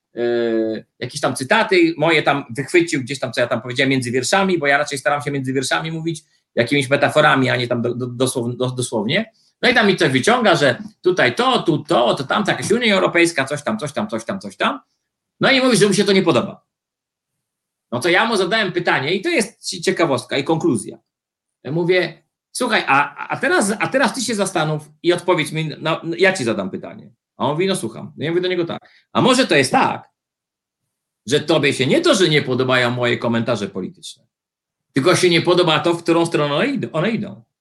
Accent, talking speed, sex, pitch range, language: native, 215 wpm, male, 135-195 Hz, Polish